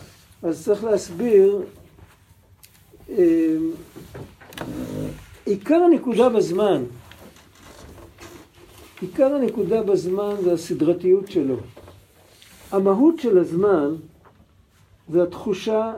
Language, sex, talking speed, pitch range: Hebrew, male, 65 wpm, 160-255 Hz